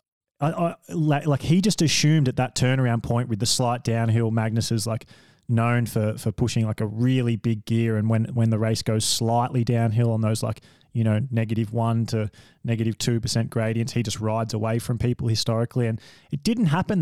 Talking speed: 185 wpm